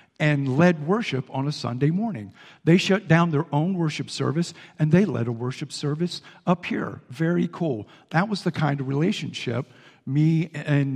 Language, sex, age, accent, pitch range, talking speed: English, male, 50-69, American, 145-180 Hz, 175 wpm